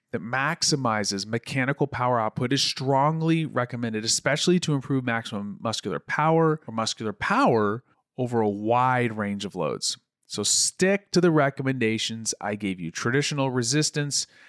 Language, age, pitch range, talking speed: English, 30-49, 110-140 Hz, 135 wpm